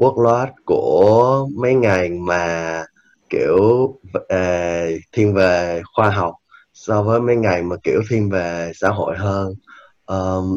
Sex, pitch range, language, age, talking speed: male, 90-115 Hz, Vietnamese, 20-39, 130 wpm